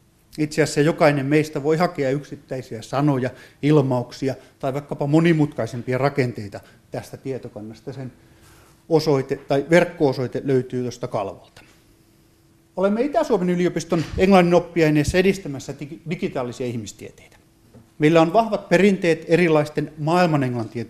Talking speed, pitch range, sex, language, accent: 105 wpm, 125-165 Hz, male, Finnish, native